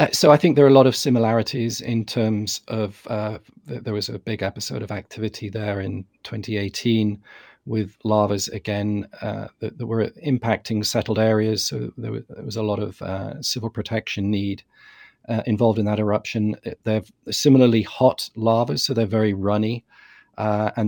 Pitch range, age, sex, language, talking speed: 105-115 Hz, 40-59, male, English, 170 wpm